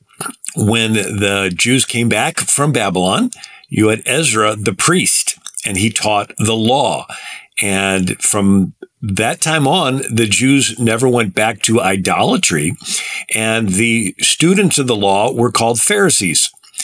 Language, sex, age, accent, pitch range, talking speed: English, male, 50-69, American, 105-130 Hz, 135 wpm